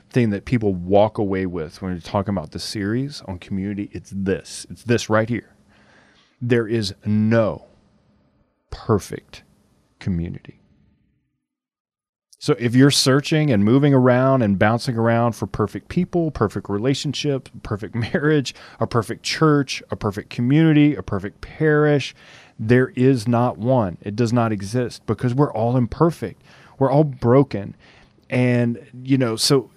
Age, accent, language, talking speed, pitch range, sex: 30-49, American, English, 140 wpm, 105-135 Hz, male